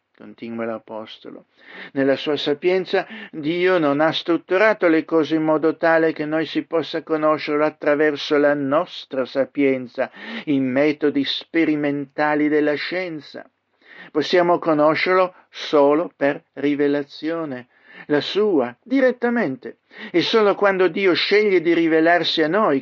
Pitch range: 140-175 Hz